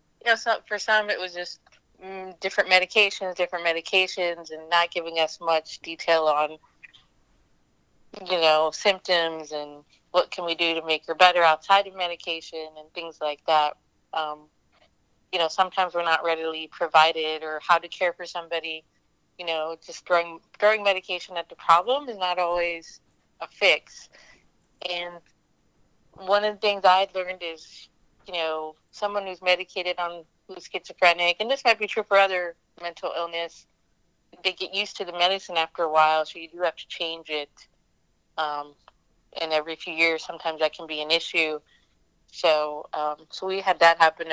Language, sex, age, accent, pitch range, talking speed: English, female, 30-49, American, 160-185 Hz, 170 wpm